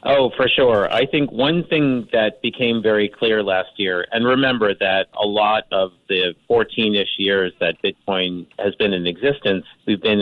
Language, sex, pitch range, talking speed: English, male, 85-110 Hz, 175 wpm